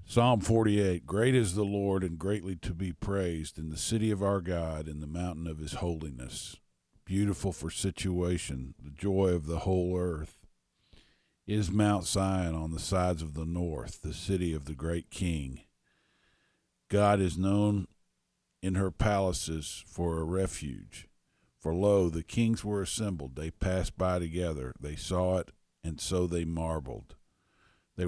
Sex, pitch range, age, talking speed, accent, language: male, 80-100 Hz, 50-69, 160 wpm, American, English